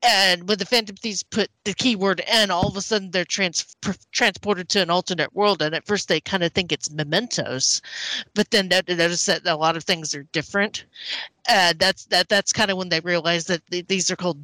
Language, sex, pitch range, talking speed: English, female, 155-200 Hz, 230 wpm